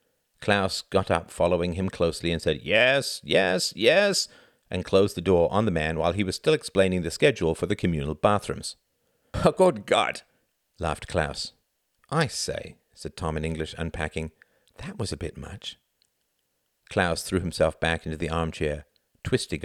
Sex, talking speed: male, 165 wpm